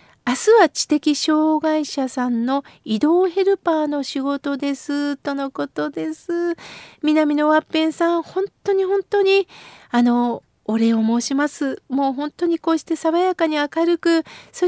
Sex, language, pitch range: female, Japanese, 265-320 Hz